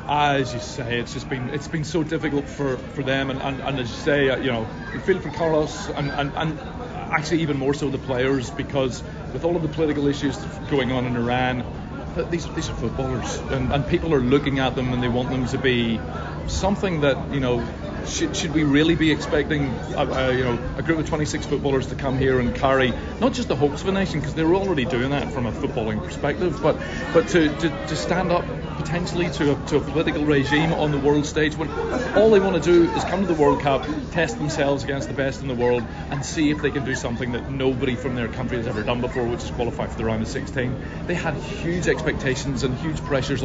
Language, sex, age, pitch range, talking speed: English, male, 30-49, 125-150 Hz, 230 wpm